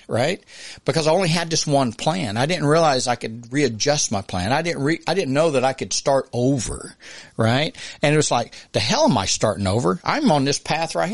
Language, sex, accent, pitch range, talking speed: English, male, American, 115-160 Hz, 230 wpm